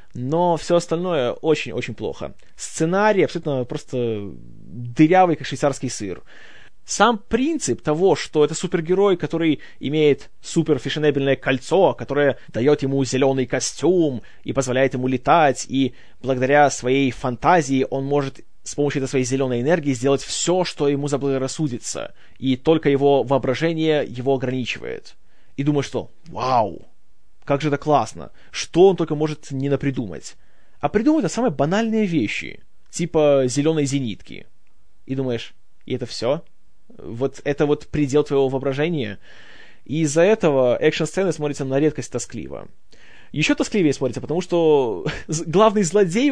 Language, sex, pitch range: Russian, male, 130-165 Hz